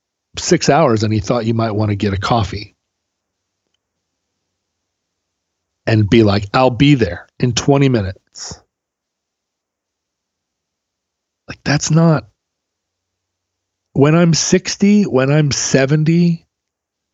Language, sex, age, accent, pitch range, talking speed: English, male, 40-59, American, 95-155 Hz, 105 wpm